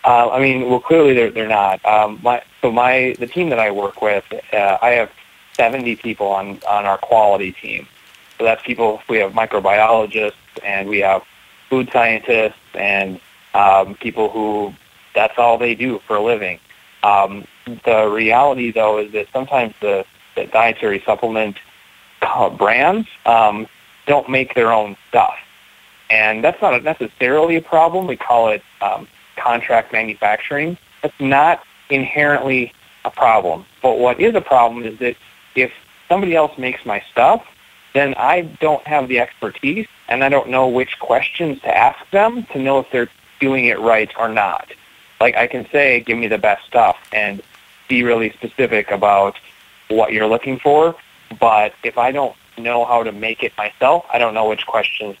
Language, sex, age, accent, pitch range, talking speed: English, male, 30-49, American, 110-135 Hz, 170 wpm